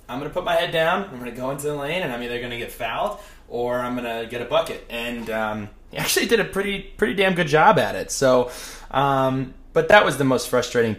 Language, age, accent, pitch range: English, 20-39, American, 110-135 Hz